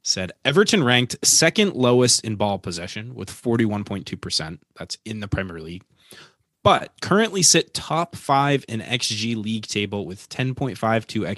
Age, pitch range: 20-39, 105-130 Hz